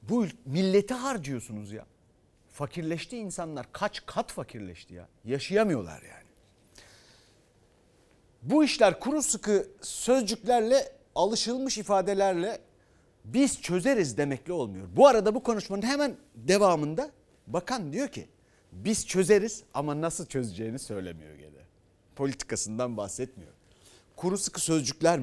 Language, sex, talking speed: Turkish, male, 105 wpm